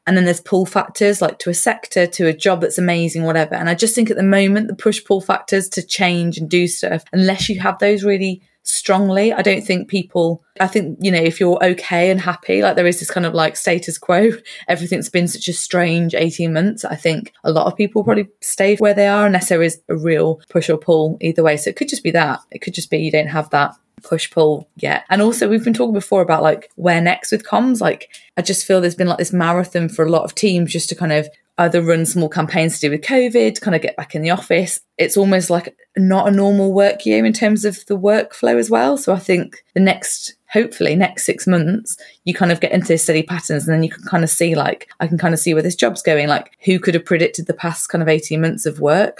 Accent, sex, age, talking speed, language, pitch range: British, female, 20-39, 255 wpm, English, 165-195 Hz